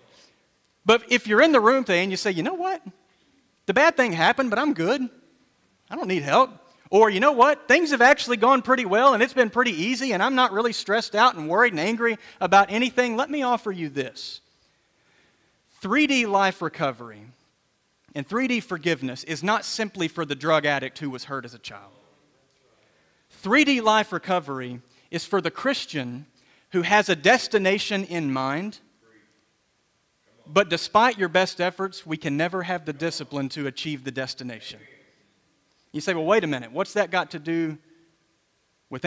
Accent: American